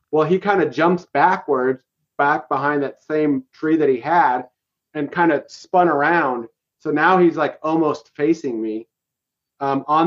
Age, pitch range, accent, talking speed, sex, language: 30-49, 130-160 Hz, American, 165 wpm, male, English